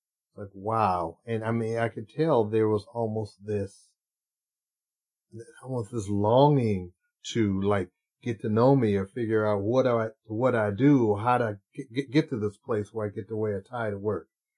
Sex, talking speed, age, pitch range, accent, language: male, 190 wpm, 40-59, 105-120 Hz, American, English